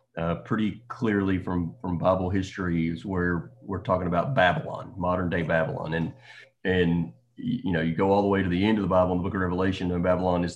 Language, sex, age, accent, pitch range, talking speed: English, male, 30-49, American, 90-115 Hz, 215 wpm